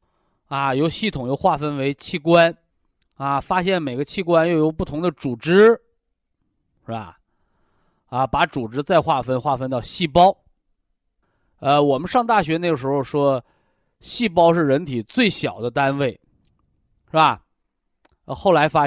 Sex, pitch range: male, 125-165 Hz